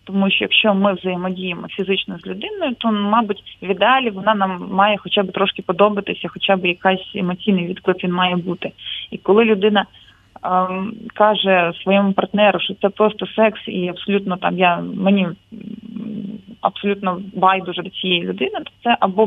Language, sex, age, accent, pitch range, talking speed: Ukrainian, female, 20-39, native, 190-215 Hz, 160 wpm